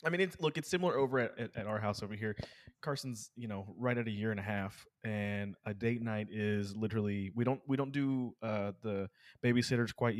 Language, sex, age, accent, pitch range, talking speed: English, male, 20-39, American, 100-120 Hz, 230 wpm